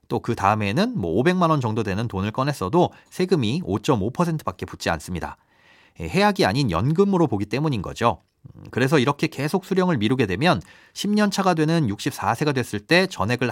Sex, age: male, 40-59